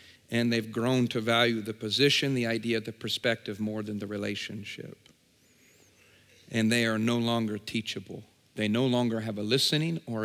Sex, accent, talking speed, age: male, American, 165 wpm, 50-69